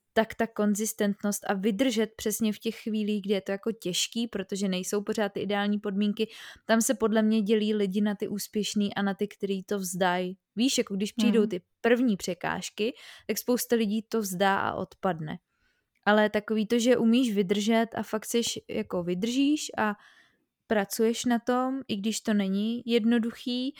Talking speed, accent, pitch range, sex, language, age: 175 wpm, native, 205-225 Hz, female, Czech, 20-39